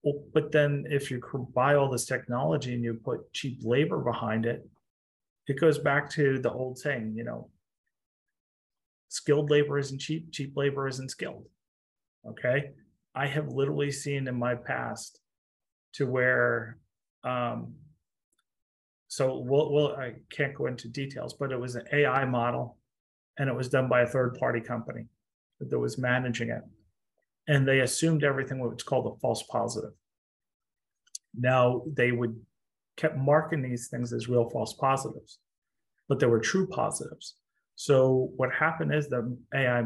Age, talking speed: 30-49, 150 wpm